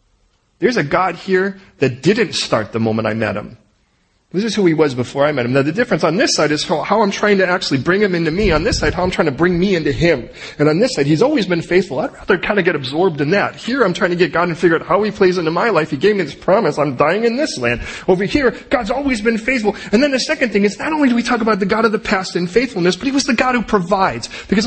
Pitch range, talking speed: 170-235 Hz, 300 wpm